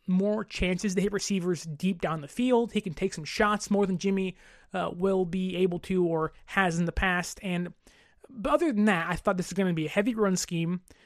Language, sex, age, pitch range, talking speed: English, male, 20-39, 185-240 Hz, 235 wpm